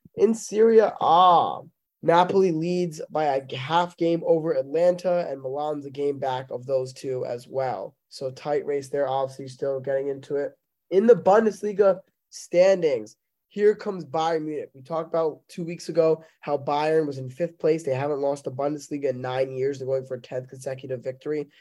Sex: male